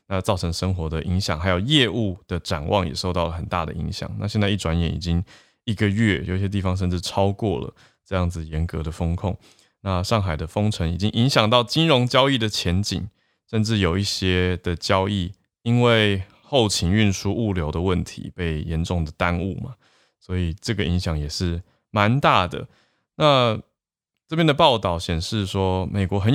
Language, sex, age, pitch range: Chinese, male, 20-39, 90-105 Hz